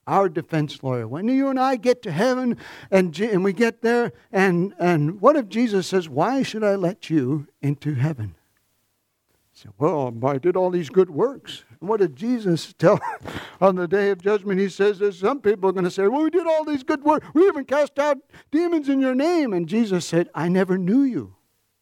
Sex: male